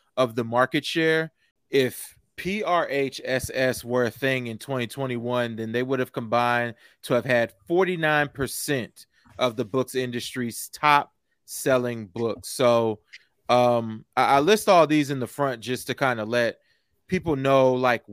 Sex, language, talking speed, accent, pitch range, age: male, English, 150 wpm, American, 120-140 Hz, 20-39